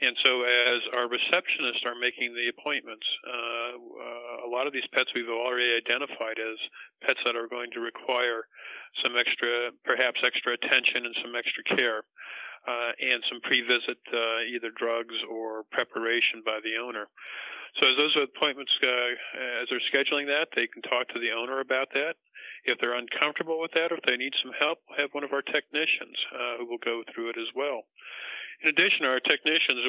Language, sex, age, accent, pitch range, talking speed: English, male, 50-69, American, 115-125 Hz, 185 wpm